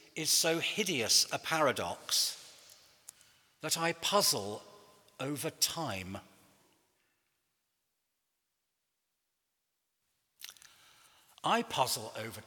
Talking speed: 65 wpm